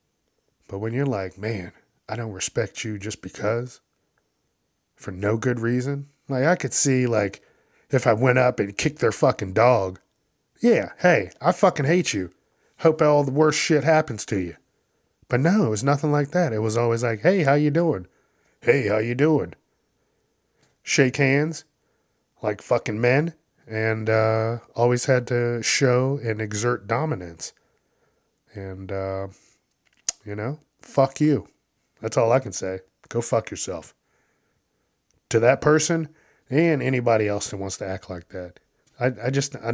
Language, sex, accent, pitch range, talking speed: English, male, American, 105-145 Hz, 160 wpm